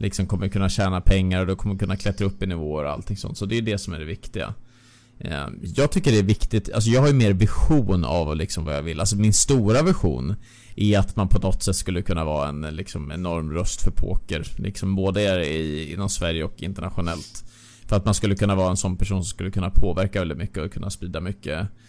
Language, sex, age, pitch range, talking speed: Swedish, male, 20-39, 95-110 Hz, 235 wpm